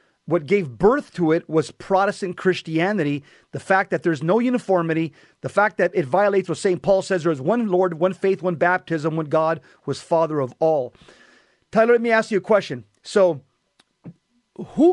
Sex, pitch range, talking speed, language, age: male, 165-210 Hz, 185 wpm, English, 40-59